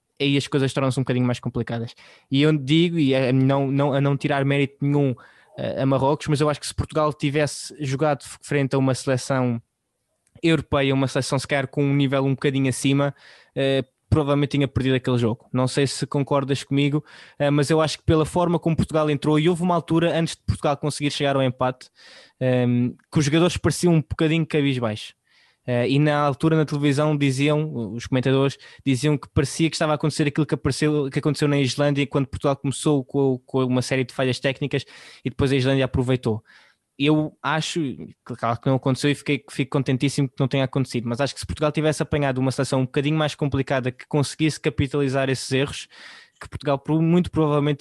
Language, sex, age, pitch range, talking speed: Portuguese, male, 20-39, 135-150 Hz, 200 wpm